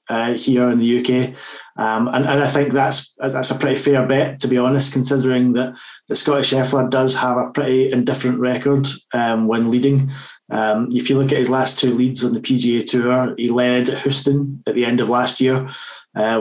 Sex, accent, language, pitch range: male, British, English, 125-135 Hz